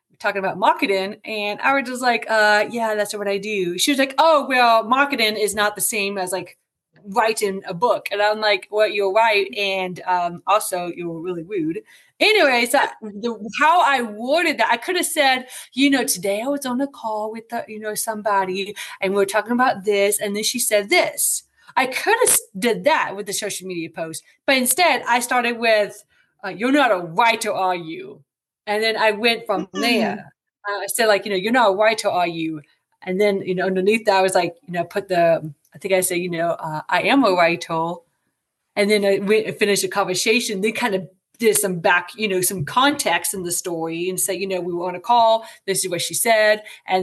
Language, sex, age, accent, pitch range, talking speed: English, female, 30-49, American, 190-240 Hz, 225 wpm